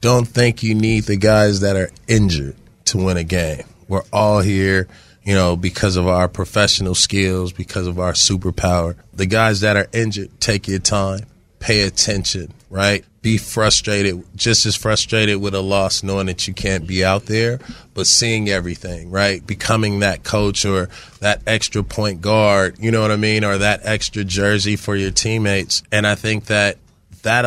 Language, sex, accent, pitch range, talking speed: English, male, American, 95-110 Hz, 180 wpm